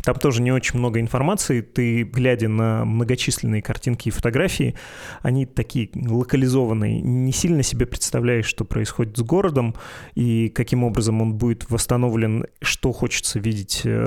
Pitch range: 110-125 Hz